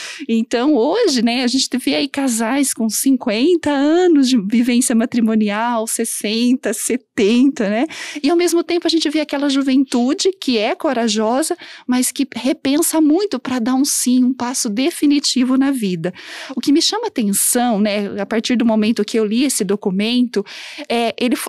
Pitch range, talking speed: 225-280 Hz, 165 wpm